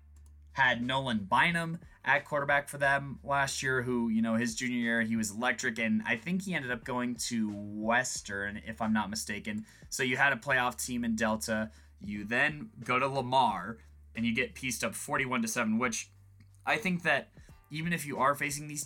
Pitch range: 105-130 Hz